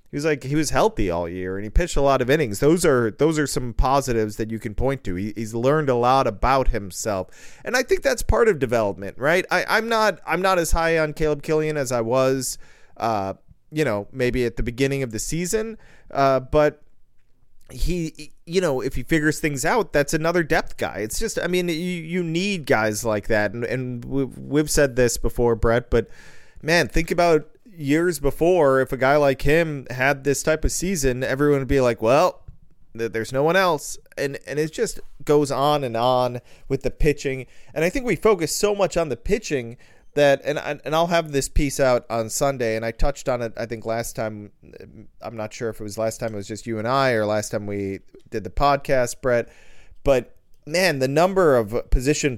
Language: English